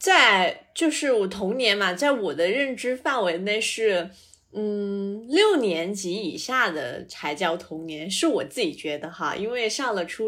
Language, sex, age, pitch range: Chinese, female, 20-39, 185-255 Hz